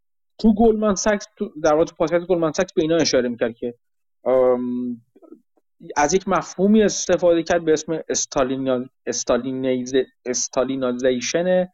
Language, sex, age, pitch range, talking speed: Persian, male, 30-49, 120-170 Hz, 105 wpm